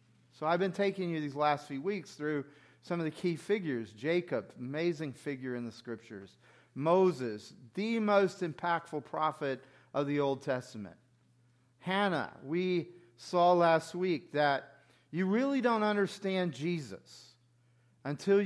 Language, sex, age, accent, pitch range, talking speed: English, male, 40-59, American, 130-185 Hz, 135 wpm